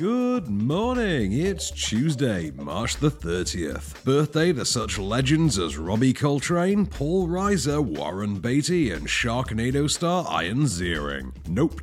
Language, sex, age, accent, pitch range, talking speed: English, male, 40-59, British, 90-140 Hz, 120 wpm